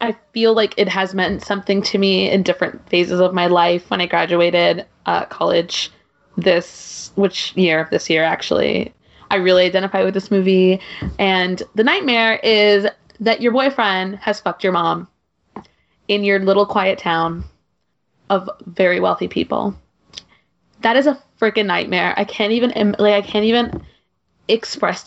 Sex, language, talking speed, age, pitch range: female, English, 160 wpm, 20-39, 185-230 Hz